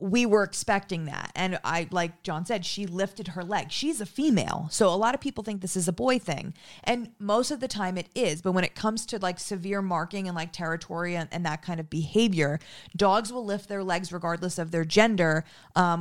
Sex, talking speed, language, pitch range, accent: female, 230 wpm, English, 170-210 Hz, American